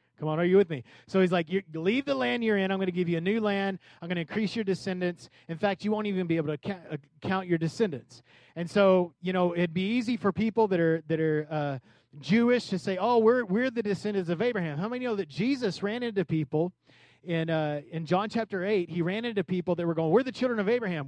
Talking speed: 255 wpm